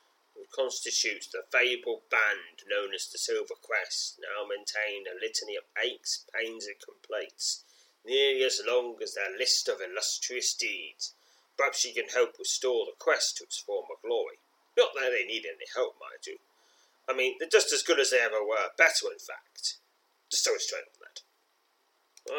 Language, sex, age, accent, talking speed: English, male, 30-49, British, 190 wpm